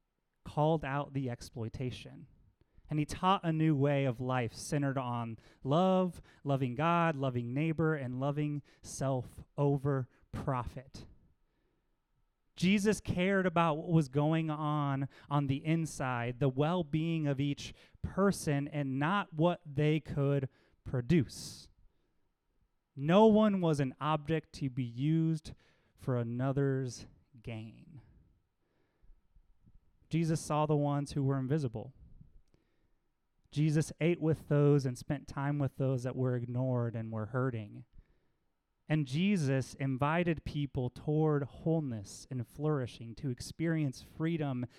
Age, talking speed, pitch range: 30-49, 120 wpm, 125-155 Hz